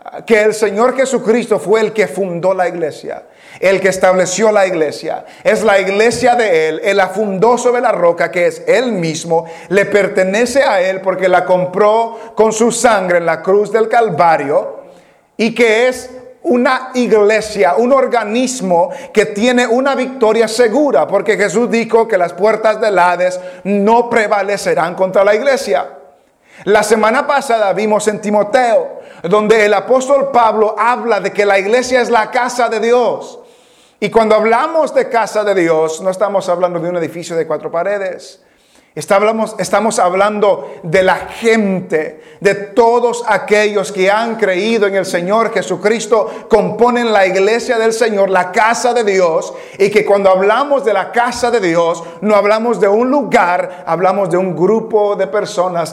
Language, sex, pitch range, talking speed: English, male, 185-235 Hz, 160 wpm